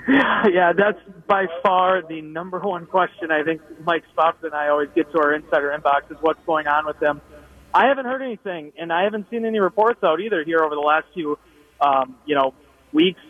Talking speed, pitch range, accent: 210 wpm, 150-195 Hz, American